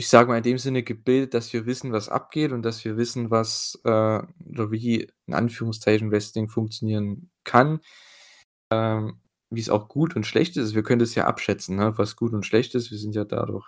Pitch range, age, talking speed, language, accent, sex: 110-135 Hz, 20-39, 210 wpm, German, German, male